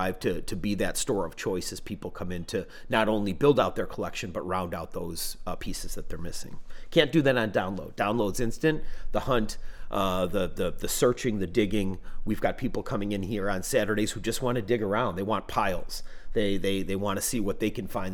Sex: male